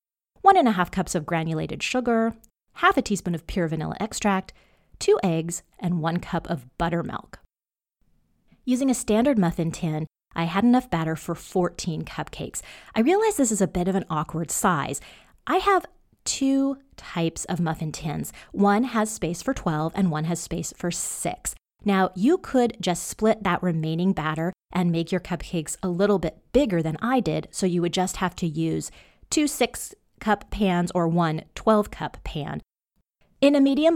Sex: female